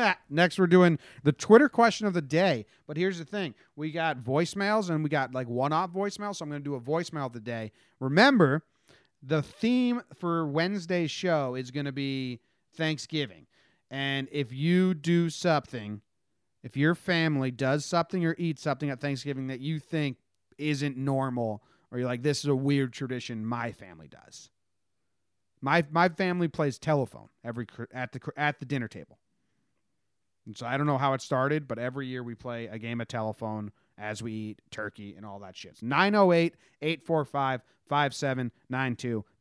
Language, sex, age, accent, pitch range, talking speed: English, male, 30-49, American, 115-160 Hz, 170 wpm